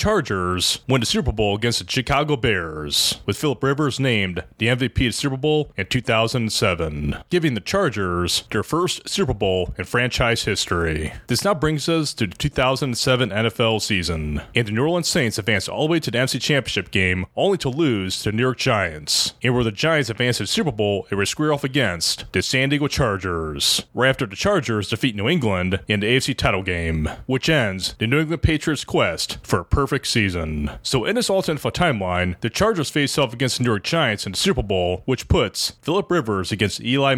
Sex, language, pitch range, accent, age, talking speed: male, English, 100-145 Hz, American, 30-49, 205 wpm